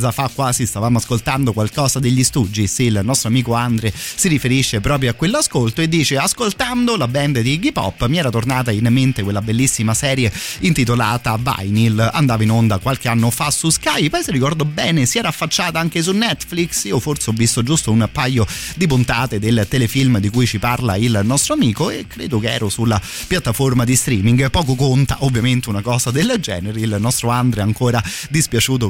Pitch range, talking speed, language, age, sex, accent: 115-145 Hz, 190 wpm, Italian, 30-49, male, native